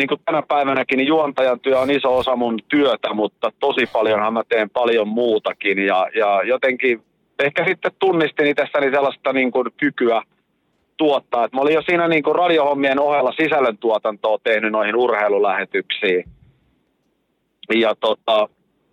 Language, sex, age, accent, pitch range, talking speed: Finnish, male, 30-49, native, 115-155 Hz, 135 wpm